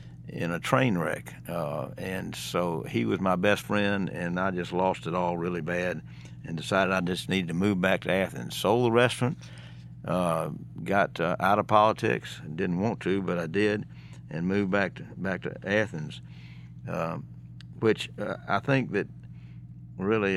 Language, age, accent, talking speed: English, 60-79, American, 175 wpm